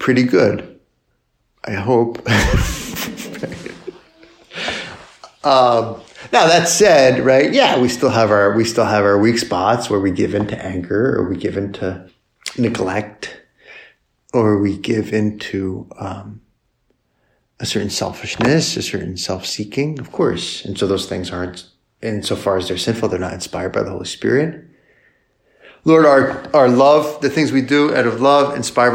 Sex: male